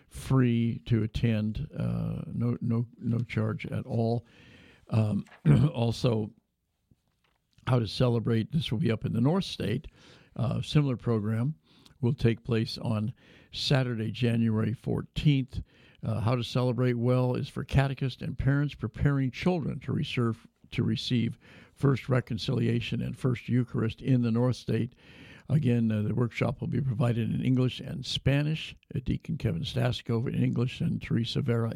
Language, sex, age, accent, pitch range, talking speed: English, male, 60-79, American, 115-130 Hz, 145 wpm